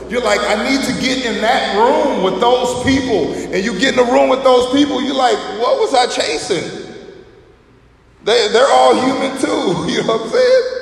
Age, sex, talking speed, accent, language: 20-39, male, 205 wpm, American, English